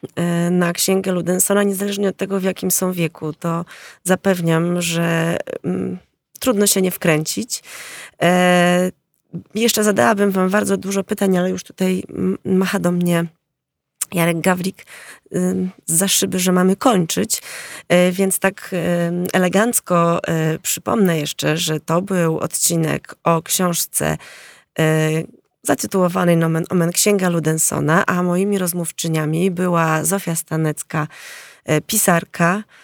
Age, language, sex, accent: 20-39, Polish, female, native